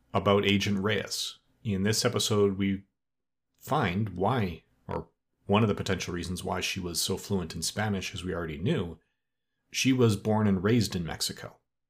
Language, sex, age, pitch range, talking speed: English, male, 40-59, 95-115 Hz, 165 wpm